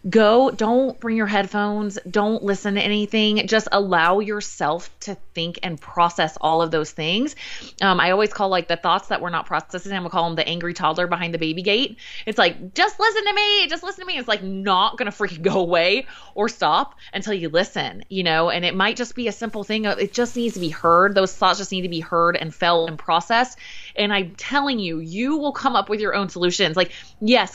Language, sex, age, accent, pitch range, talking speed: English, female, 20-39, American, 160-210 Hz, 235 wpm